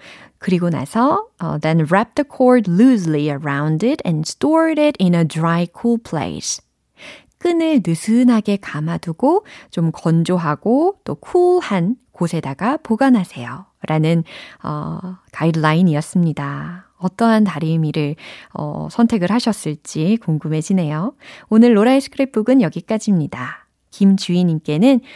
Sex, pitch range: female, 160-255 Hz